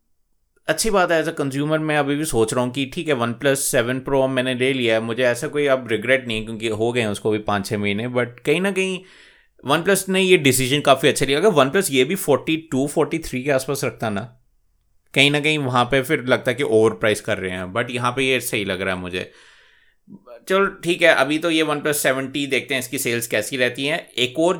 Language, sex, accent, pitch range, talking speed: Hindi, male, native, 110-155 Hz, 250 wpm